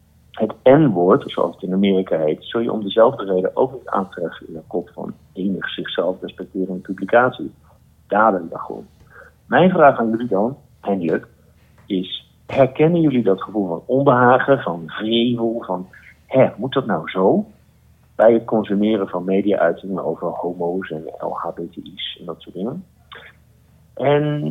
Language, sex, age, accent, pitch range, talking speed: Dutch, male, 50-69, Dutch, 90-135 Hz, 150 wpm